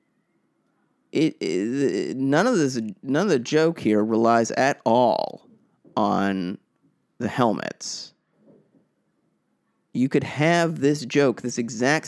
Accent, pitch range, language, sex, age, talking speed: American, 110-140 Hz, English, male, 30-49, 115 wpm